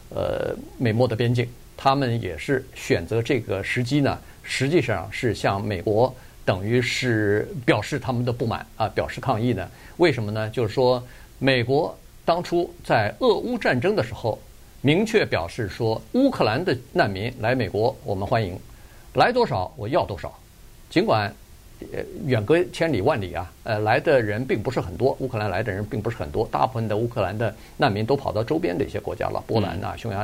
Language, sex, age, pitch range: Chinese, male, 50-69, 115-160 Hz